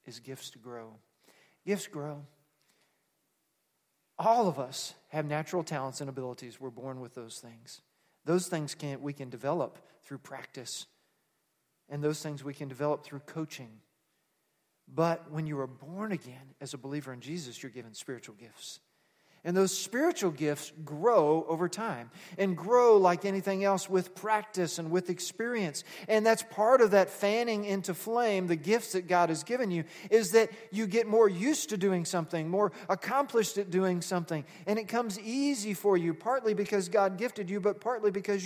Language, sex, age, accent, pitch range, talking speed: English, male, 40-59, American, 155-215 Hz, 170 wpm